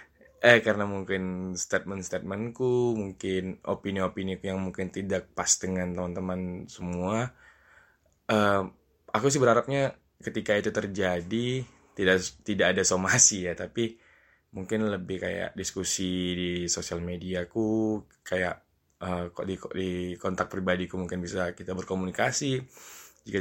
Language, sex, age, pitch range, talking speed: Indonesian, male, 20-39, 90-105 Hz, 120 wpm